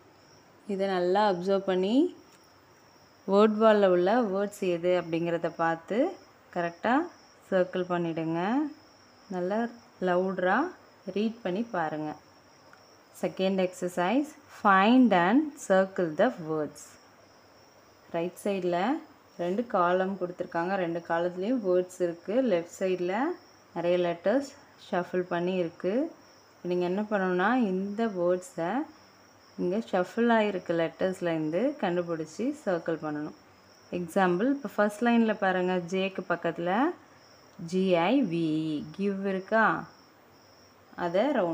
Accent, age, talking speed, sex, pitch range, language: native, 20-39, 95 wpm, female, 175-215 Hz, Tamil